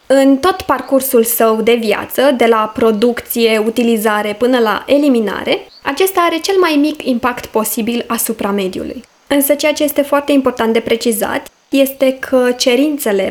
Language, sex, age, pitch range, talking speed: Romanian, female, 20-39, 225-285 Hz, 150 wpm